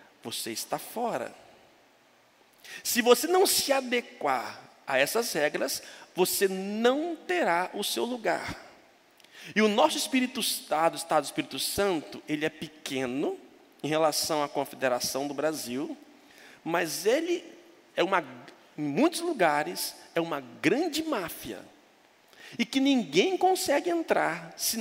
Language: Portuguese